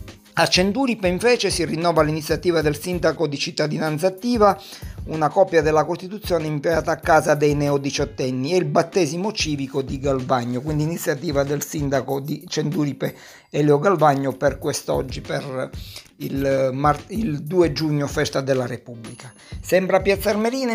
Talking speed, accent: 130 wpm, native